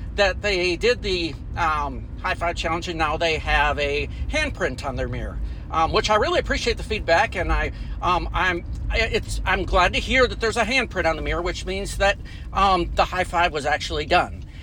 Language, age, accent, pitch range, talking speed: English, 50-69, American, 160-210 Hz, 205 wpm